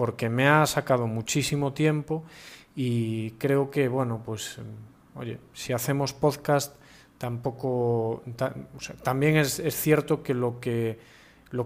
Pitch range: 115-140 Hz